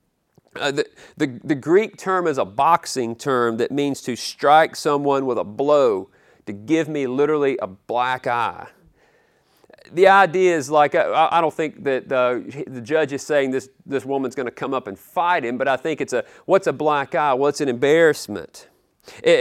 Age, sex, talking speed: 40-59, male, 195 wpm